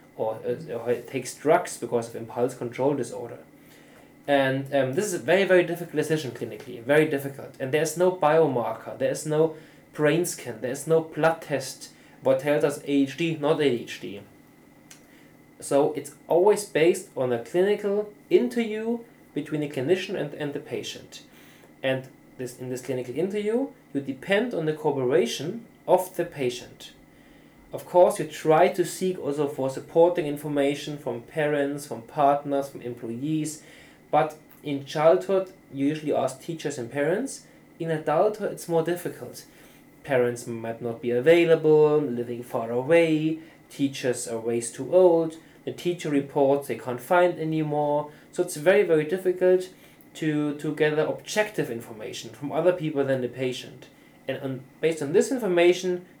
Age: 20-39